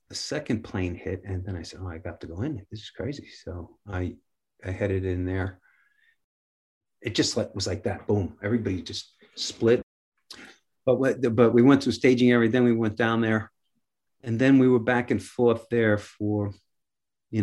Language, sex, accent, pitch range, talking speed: English, male, American, 100-120 Hz, 195 wpm